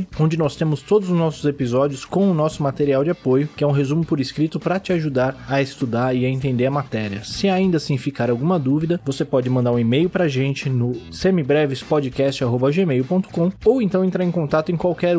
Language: Portuguese